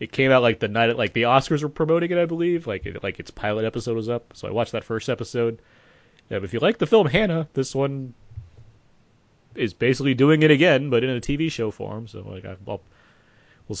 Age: 30-49